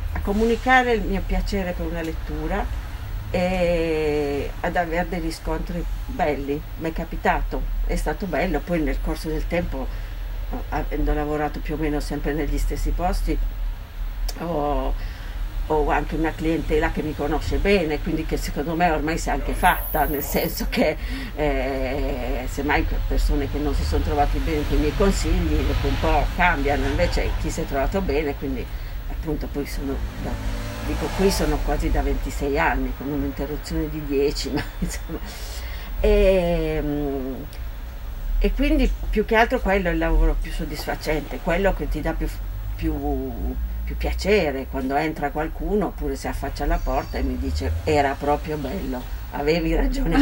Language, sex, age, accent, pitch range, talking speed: Italian, female, 50-69, native, 125-160 Hz, 155 wpm